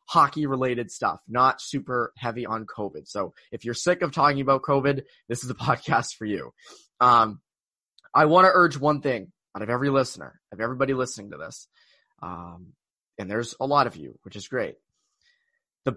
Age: 20-39